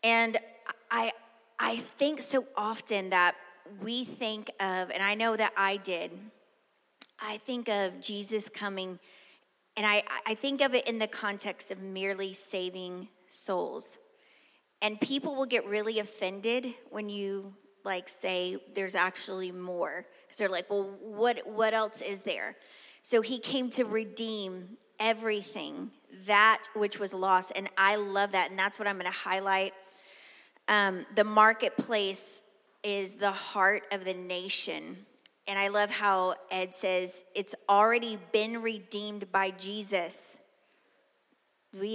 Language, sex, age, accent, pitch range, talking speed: English, female, 30-49, American, 195-225 Hz, 140 wpm